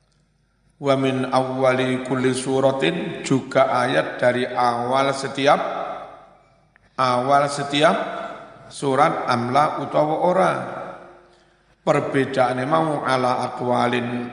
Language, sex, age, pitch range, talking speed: Indonesian, male, 50-69, 125-150 Hz, 80 wpm